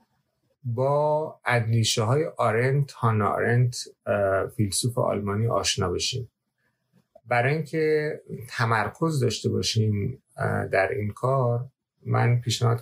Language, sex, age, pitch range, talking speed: Persian, male, 30-49, 110-135 Hz, 95 wpm